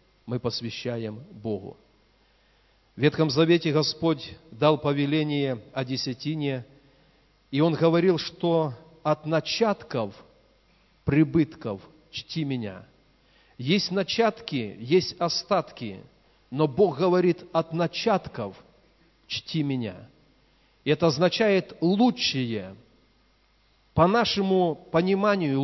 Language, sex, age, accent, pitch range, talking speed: Russian, male, 40-59, native, 130-165 Hz, 95 wpm